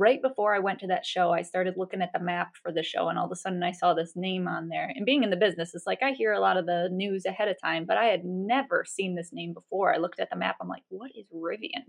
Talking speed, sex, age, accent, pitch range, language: 315 wpm, female, 20-39, American, 185-235 Hz, English